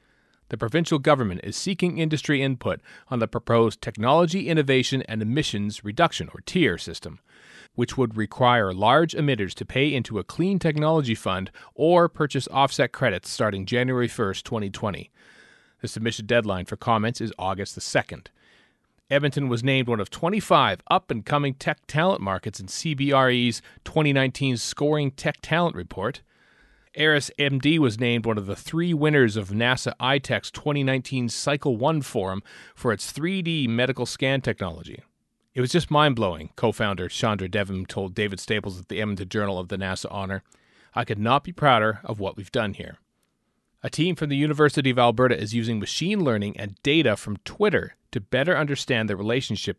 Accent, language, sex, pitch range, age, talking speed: American, English, male, 105-145 Hz, 40-59, 160 wpm